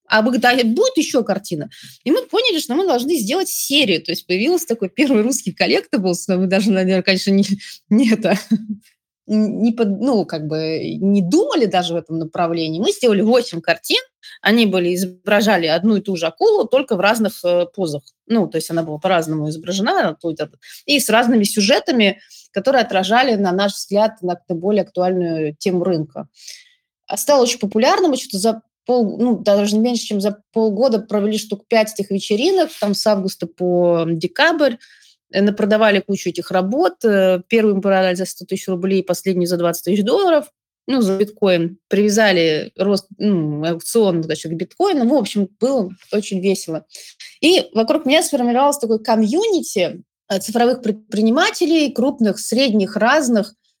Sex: female